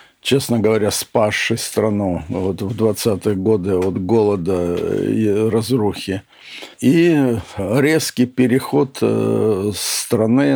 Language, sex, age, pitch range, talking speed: Russian, male, 60-79, 105-130 Hz, 90 wpm